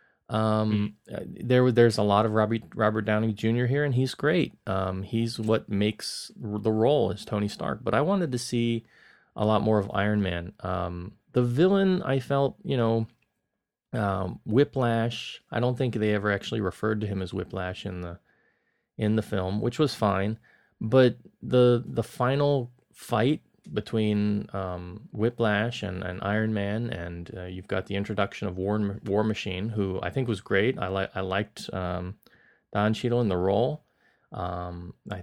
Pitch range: 100-115 Hz